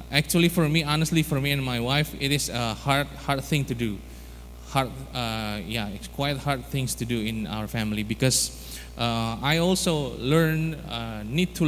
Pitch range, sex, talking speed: 105-145 Hz, male, 190 wpm